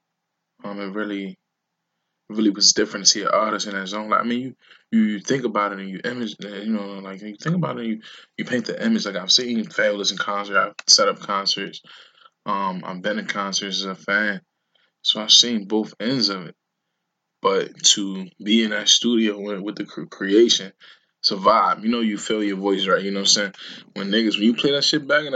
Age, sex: 20-39, male